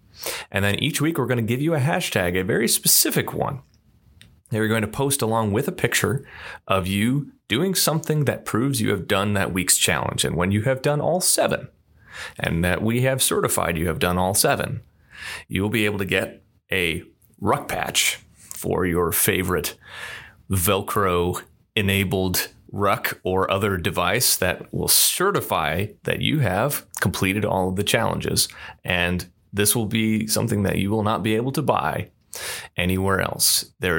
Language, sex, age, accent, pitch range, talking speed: English, male, 30-49, American, 95-125 Hz, 170 wpm